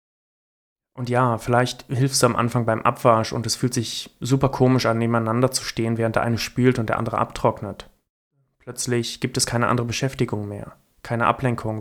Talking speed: 185 wpm